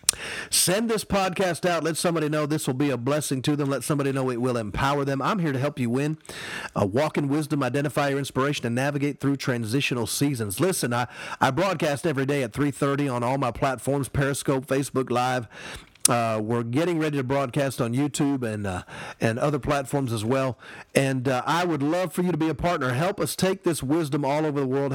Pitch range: 125-155 Hz